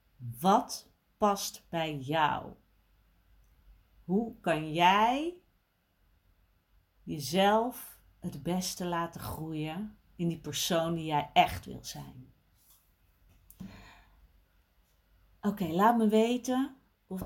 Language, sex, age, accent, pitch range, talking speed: Dutch, female, 40-59, Dutch, 155-210 Hz, 85 wpm